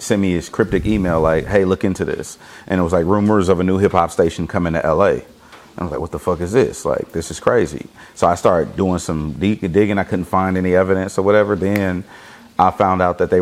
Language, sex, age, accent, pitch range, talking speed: English, male, 30-49, American, 85-105 Hz, 250 wpm